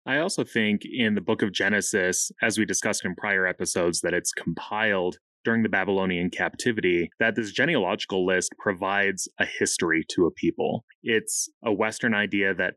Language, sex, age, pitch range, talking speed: English, male, 20-39, 90-115 Hz, 170 wpm